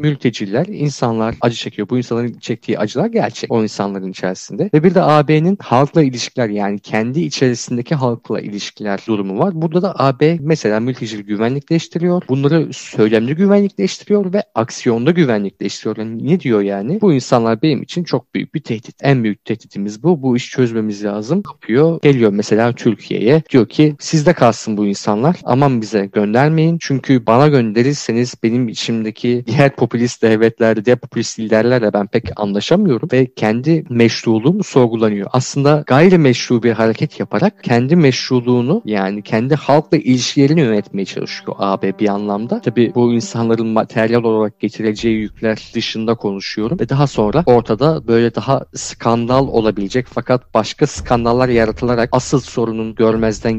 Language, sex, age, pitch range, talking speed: Turkish, male, 40-59, 110-145 Hz, 145 wpm